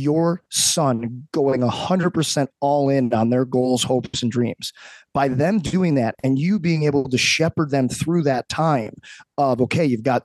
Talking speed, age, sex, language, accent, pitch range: 175 wpm, 20-39, male, English, American, 125-160 Hz